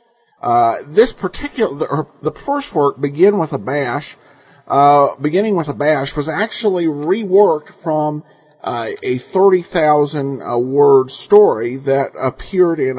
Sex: male